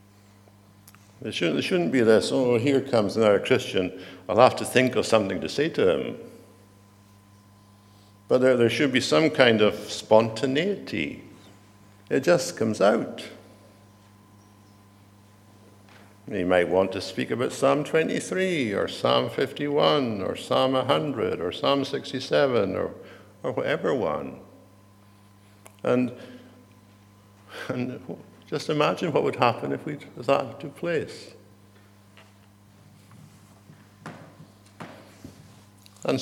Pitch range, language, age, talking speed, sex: 100-115 Hz, English, 60-79, 110 wpm, male